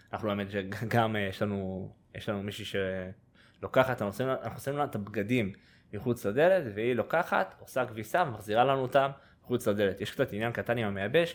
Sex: male